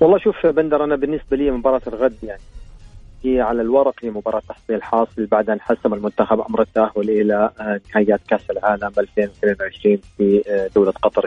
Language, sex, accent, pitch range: English, male, Lebanese, 110-135 Hz